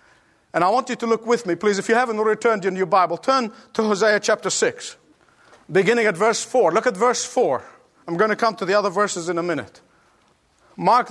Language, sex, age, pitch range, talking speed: English, male, 50-69, 215-275 Hz, 220 wpm